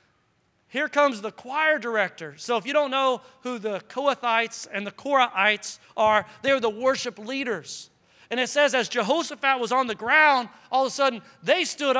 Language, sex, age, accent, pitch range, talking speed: English, male, 40-59, American, 245-325 Hz, 180 wpm